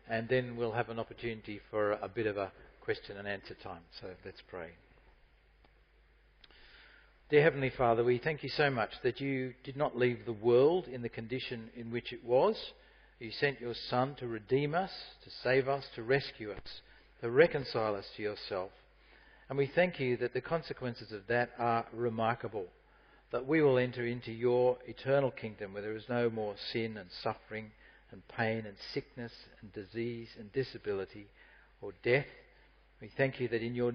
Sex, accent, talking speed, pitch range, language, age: male, Australian, 180 wpm, 115-135 Hz, English, 50-69